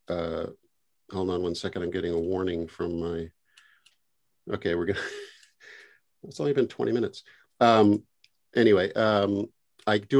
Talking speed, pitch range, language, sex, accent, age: 140 wpm, 95-115 Hz, English, male, American, 50-69